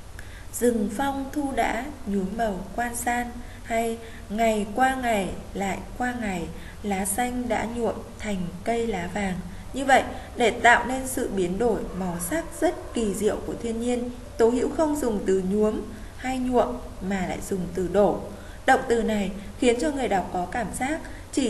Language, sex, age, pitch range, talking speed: Vietnamese, female, 20-39, 200-255 Hz, 175 wpm